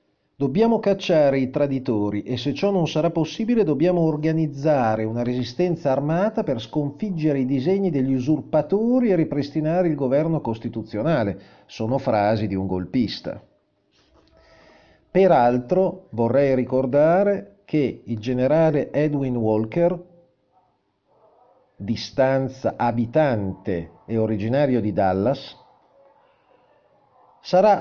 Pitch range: 115-155 Hz